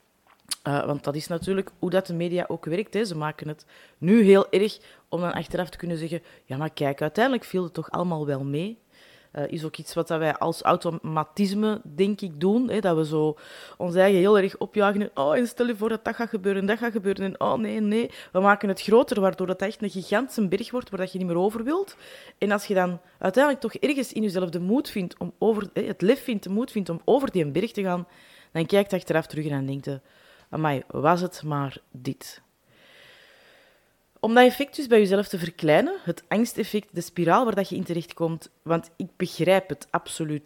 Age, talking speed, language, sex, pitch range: 30-49, 220 wpm, Dutch, female, 160-210 Hz